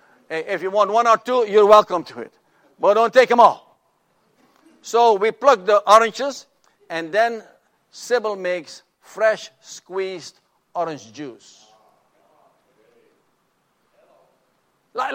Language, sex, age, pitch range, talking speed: English, male, 60-79, 160-265 Hz, 115 wpm